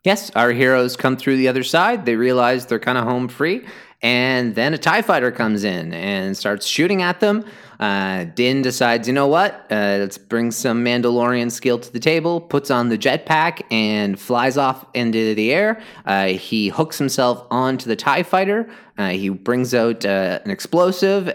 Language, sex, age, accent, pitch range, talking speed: English, male, 30-49, American, 105-150 Hz, 190 wpm